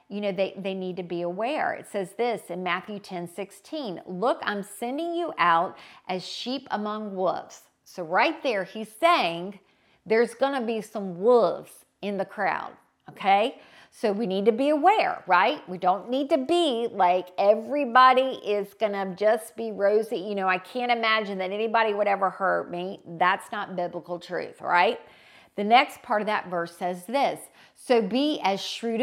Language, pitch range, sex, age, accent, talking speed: English, 185-240 Hz, female, 50-69, American, 180 wpm